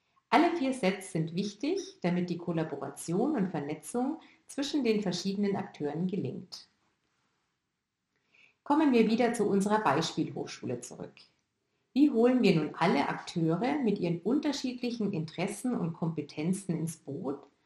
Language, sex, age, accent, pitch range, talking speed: German, female, 50-69, German, 165-230 Hz, 120 wpm